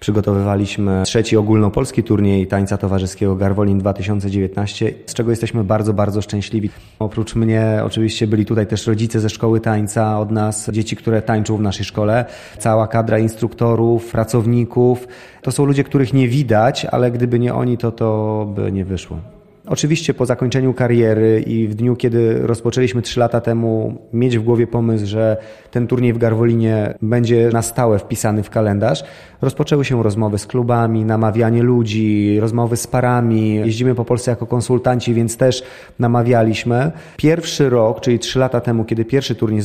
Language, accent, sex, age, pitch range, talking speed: Polish, native, male, 30-49, 110-125 Hz, 160 wpm